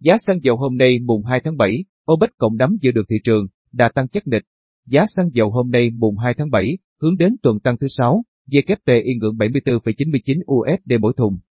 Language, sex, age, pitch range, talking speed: Vietnamese, male, 30-49, 115-145 Hz, 215 wpm